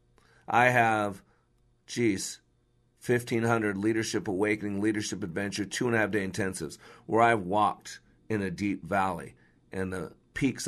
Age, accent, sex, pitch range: 50-69, American, male, 105-150 Hz